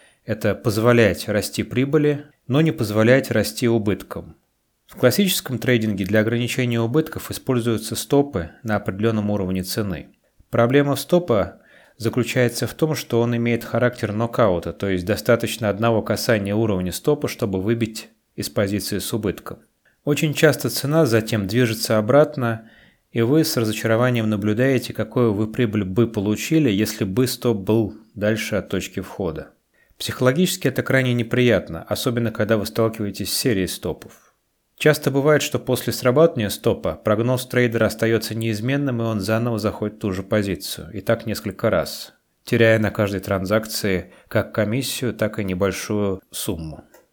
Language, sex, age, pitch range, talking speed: Russian, male, 30-49, 105-125 Hz, 140 wpm